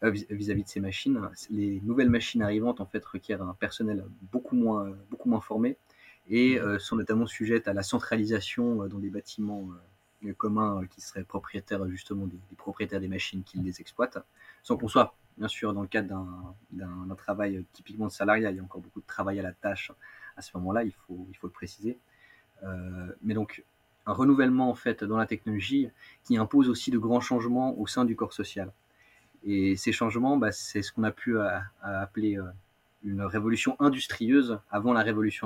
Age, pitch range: 30-49, 95-115 Hz